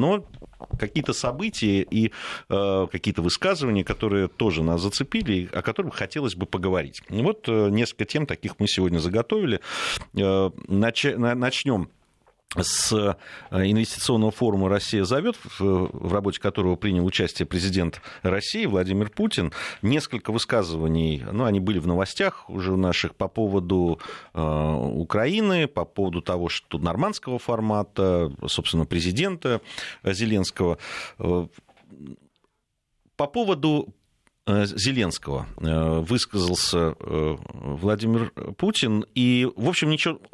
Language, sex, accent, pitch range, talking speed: Russian, male, native, 95-125 Hz, 105 wpm